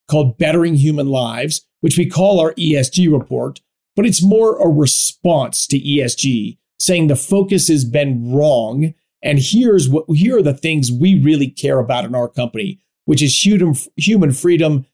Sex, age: male, 40-59